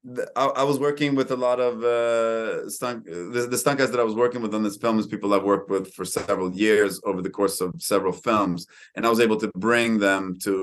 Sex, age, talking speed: male, 30-49, 235 wpm